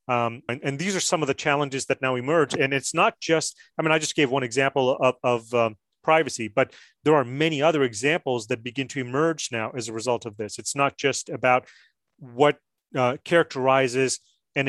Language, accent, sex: English, American, male